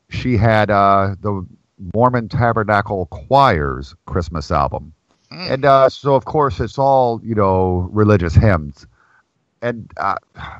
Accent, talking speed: American, 125 wpm